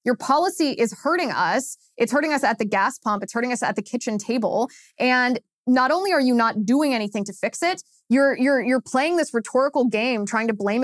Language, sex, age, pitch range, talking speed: English, female, 20-39, 210-260 Hz, 220 wpm